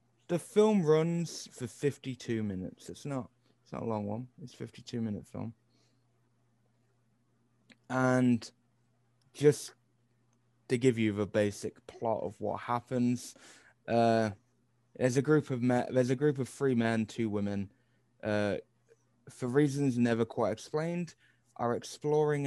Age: 20-39